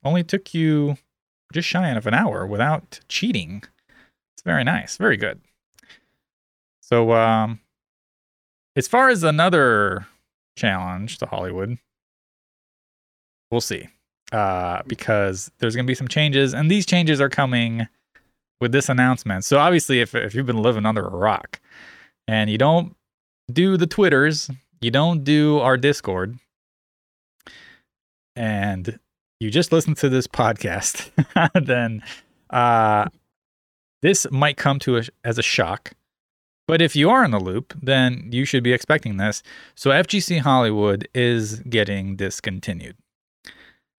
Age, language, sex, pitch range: 20-39, English, male, 115-155 Hz